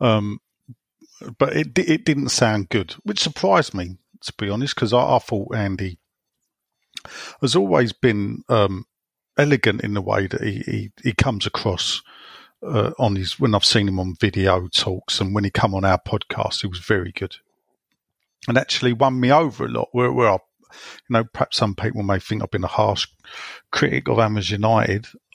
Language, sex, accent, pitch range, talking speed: English, male, British, 105-130 Hz, 185 wpm